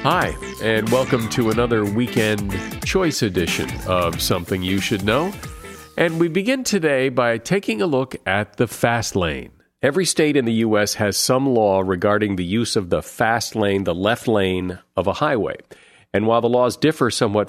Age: 50-69